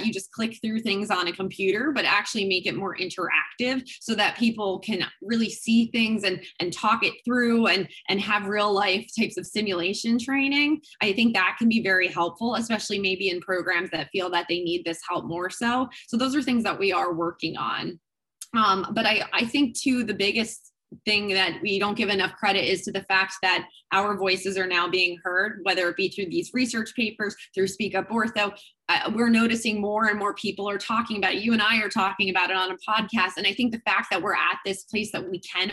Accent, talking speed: American, 225 wpm